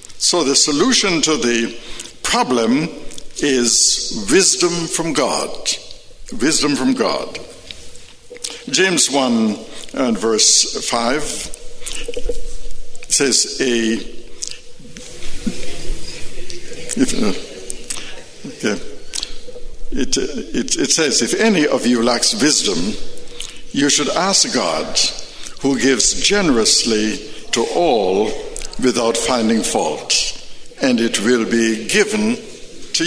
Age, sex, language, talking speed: 60-79, male, English, 95 wpm